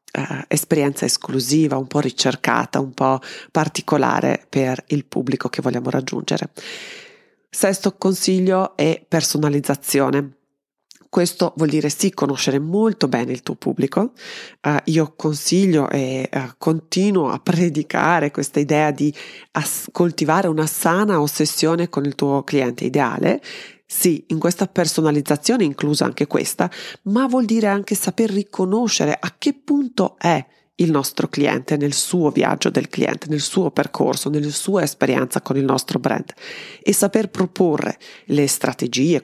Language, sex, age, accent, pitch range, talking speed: Italian, female, 30-49, native, 145-190 Hz, 130 wpm